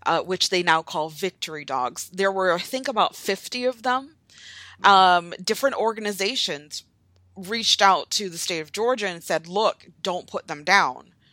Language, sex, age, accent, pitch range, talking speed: English, female, 30-49, American, 160-195 Hz, 170 wpm